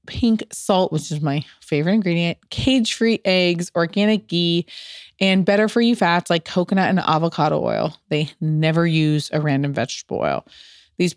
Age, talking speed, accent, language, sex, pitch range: 20-39, 160 wpm, American, English, female, 170-215 Hz